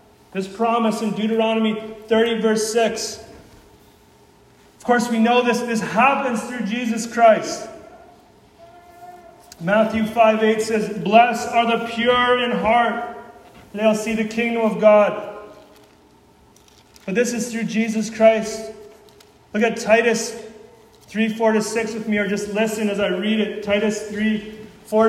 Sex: male